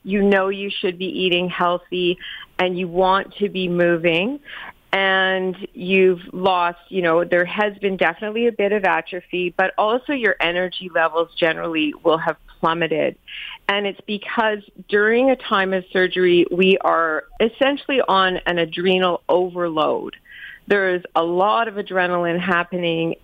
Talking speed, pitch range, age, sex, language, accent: 145 wpm, 175-210 Hz, 40-59, female, English, American